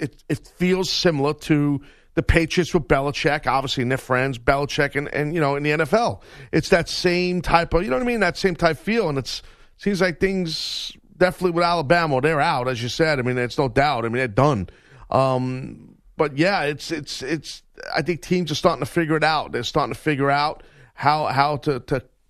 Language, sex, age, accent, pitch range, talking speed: English, male, 40-59, American, 135-170 Hz, 220 wpm